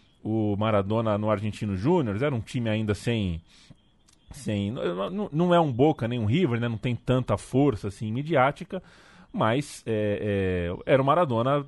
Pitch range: 110-150 Hz